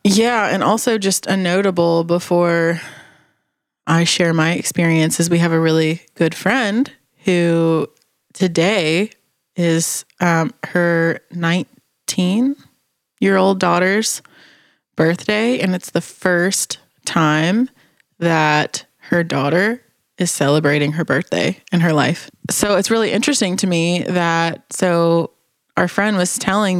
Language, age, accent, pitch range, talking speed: English, 20-39, American, 160-185 Hz, 115 wpm